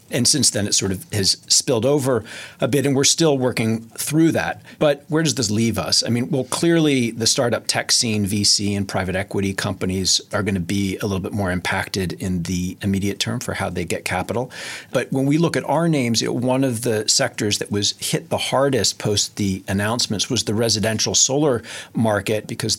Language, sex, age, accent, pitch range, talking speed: English, male, 40-59, American, 100-130 Hz, 210 wpm